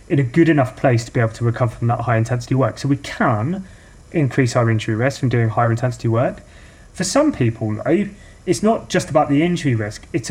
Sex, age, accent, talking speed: male, 30-49, British, 225 wpm